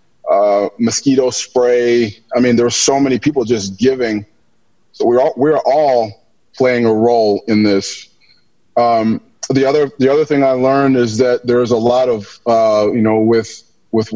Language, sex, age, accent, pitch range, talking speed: English, male, 20-39, American, 110-130 Hz, 170 wpm